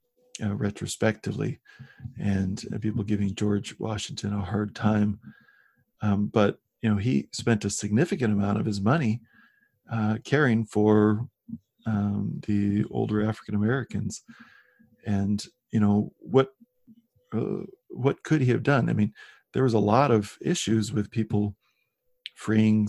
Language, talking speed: English, 135 wpm